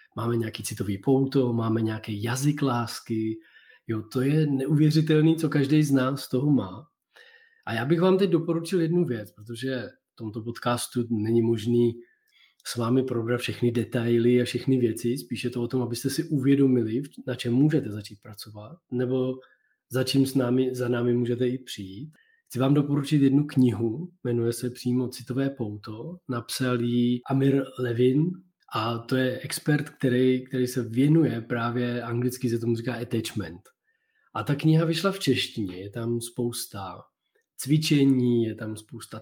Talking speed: 160 wpm